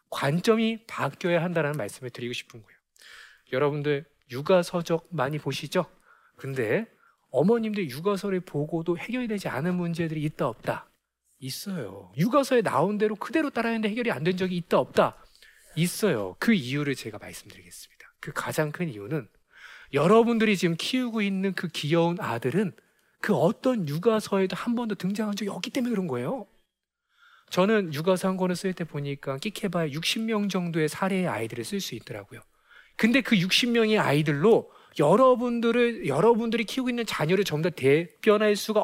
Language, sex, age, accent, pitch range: Korean, male, 40-59, native, 150-220 Hz